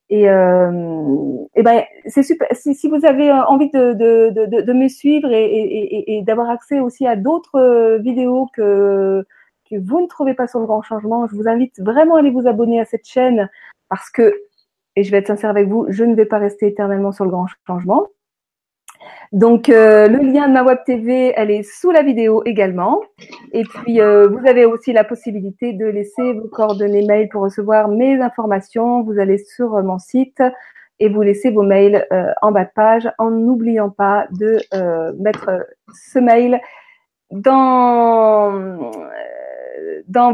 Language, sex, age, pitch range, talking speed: French, female, 40-59, 205-255 Hz, 185 wpm